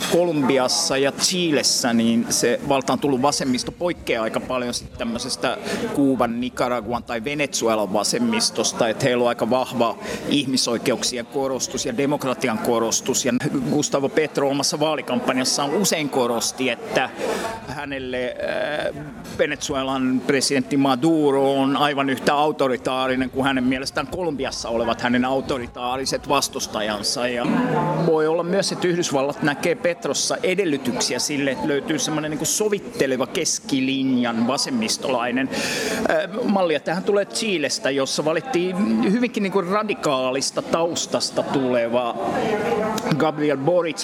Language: Finnish